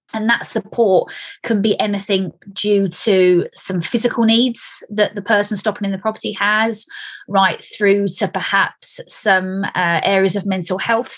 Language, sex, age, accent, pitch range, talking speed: English, female, 20-39, British, 190-230 Hz, 155 wpm